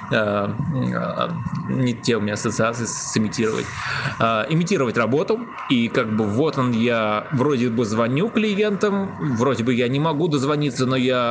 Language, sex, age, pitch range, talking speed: Russian, male, 20-39, 115-150 Hz, 150 wpm